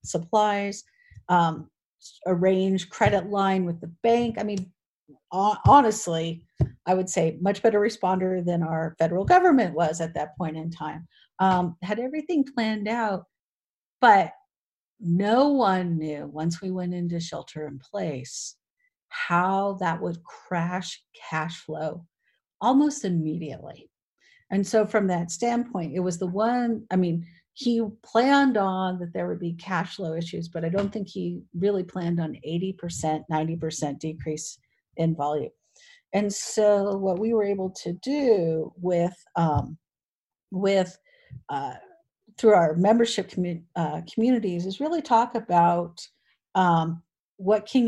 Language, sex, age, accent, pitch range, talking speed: English, female, 50-69, American, 165-215 Hz, 140 wpm